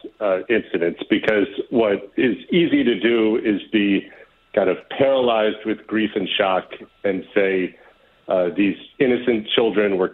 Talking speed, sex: 140 wpm, male